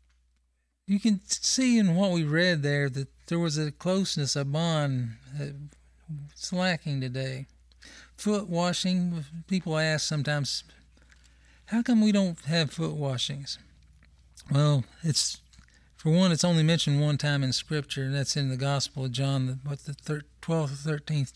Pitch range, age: 120-155 Hz, 40-59